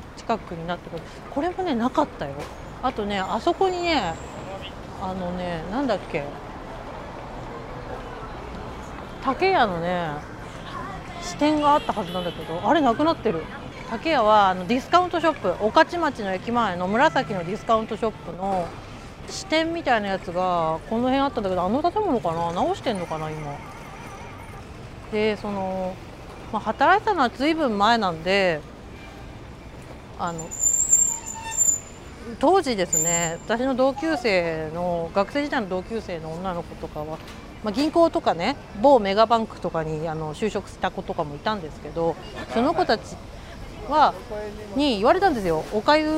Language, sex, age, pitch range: Japanese, female, 40-59, 175-275 Hz